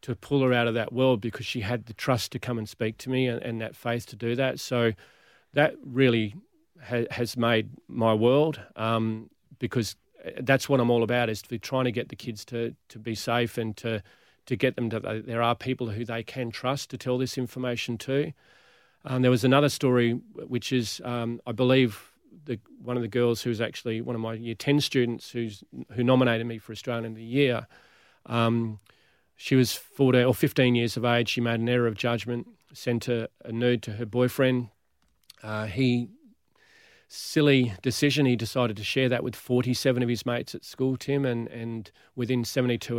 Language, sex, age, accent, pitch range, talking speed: English, male, 40-59, Australian, 115-130 Hz, 205 wpm